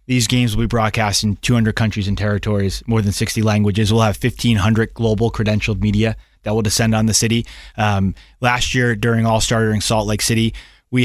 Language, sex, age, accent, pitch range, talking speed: English, male, 20-39, American, 105-125 Hz, 195 wpm